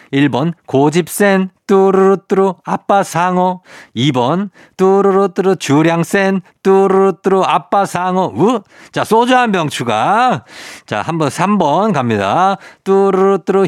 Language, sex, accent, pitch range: Korean, male, native, 120-190 Hz